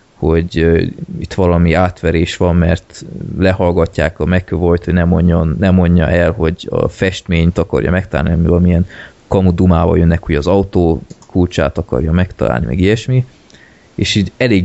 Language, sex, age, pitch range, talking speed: Hungarian, male, 20-39, 85-105 Hz, 135 wpm